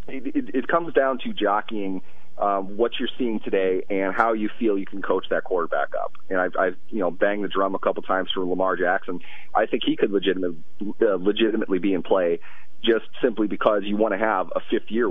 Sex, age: male, 30-49